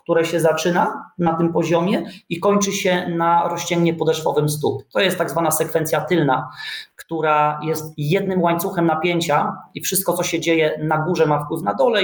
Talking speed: 175 wpm